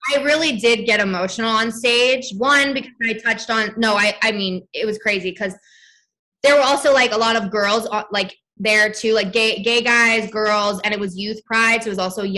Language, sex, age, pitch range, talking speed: English, female, 20-39, 190-230 Hz, 220 wpm